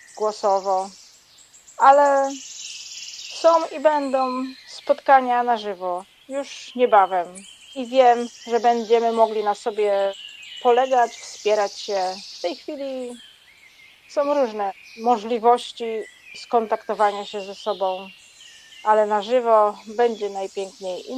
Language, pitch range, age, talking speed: Polish, 210-265 Hz, 40-59, 100 wpm